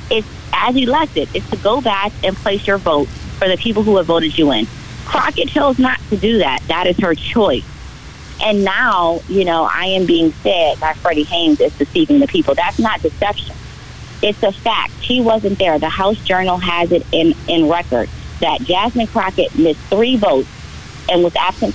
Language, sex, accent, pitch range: English, female, American, 160-215 Hz